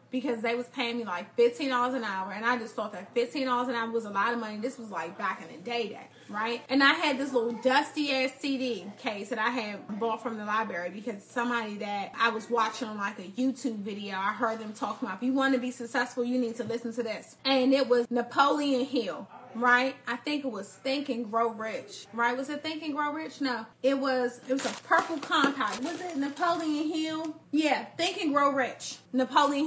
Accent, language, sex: American, English, female